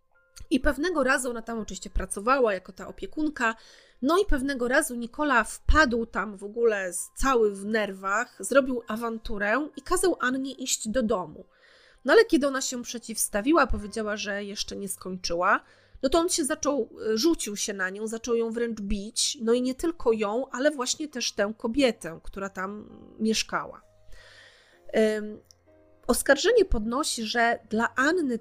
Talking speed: 150 wpm